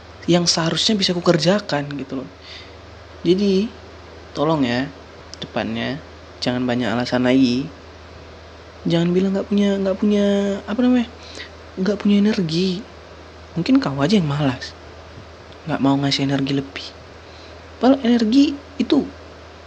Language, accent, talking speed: Indonesian, native, 120 wpm